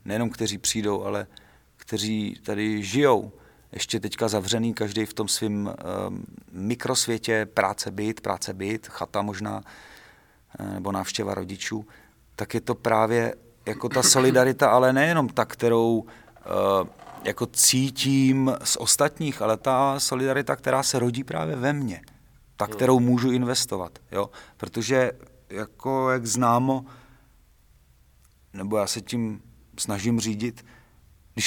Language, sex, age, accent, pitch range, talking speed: Czech, male, 40-59, native, 100-125 Hz, 130 wpm